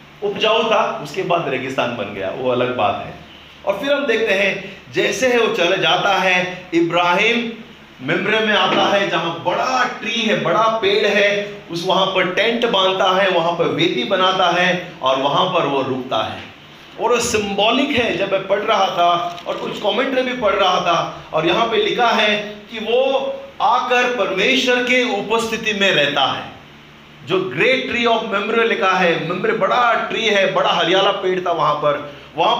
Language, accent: Hindi, native